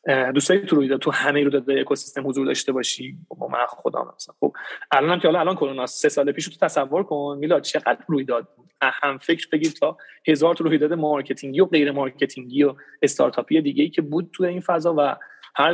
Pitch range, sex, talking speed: 150-215 Hz, male, 195 wpm